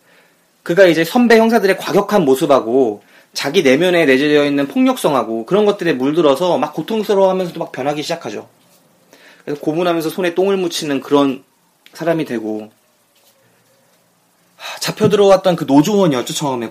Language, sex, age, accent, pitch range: Korean, male, 30-49, native, 130-190 Hz